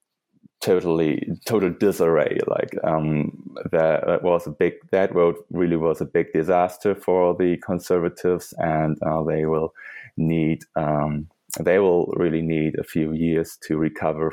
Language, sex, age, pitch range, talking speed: English, male, 20-39, 80-95 Hz, 140 wpm